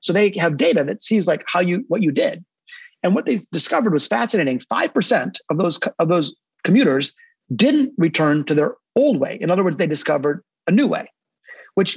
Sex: male